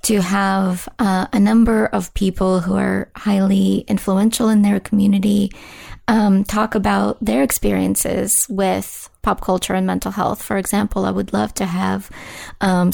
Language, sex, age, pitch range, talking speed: English, female, 30-49, 175-205 Hz, 155 wpm